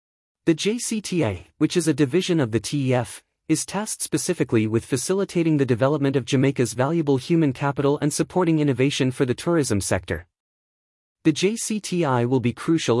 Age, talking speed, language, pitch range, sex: 30-49, 150 wpm, English, 125-165 Hz, male